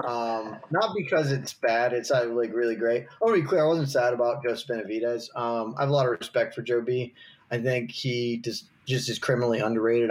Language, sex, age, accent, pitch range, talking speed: English, male, 20-39, American, 105-125 Hz, 220 wpm